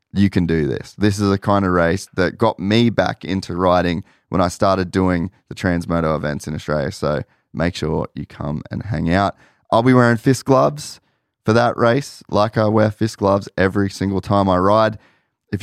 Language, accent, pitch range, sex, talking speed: English, Australian, 85-110 Hz, male, 200 wpm